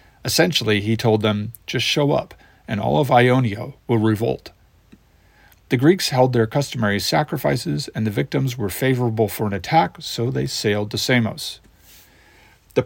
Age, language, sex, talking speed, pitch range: 40-59, English, male, 155 wpm, 110-135 Hz